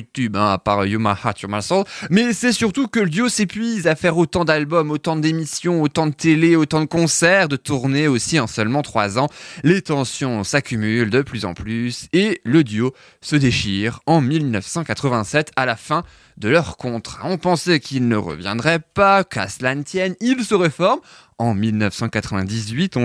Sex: male